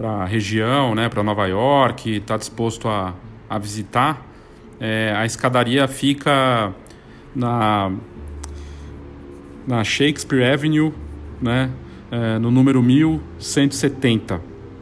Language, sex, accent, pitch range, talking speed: Portuguese, male, Brazilian, 105-130 Hz, 95 wpm